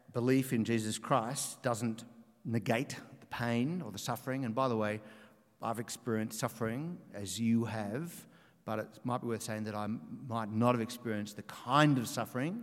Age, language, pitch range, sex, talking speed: 50-69, English, 110-145 Hz, male, 175 wpm